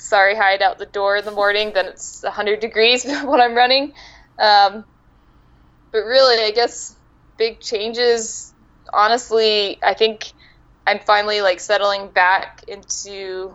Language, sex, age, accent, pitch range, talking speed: English, female, 10-29, American, 185-215 Hz, 140 wpm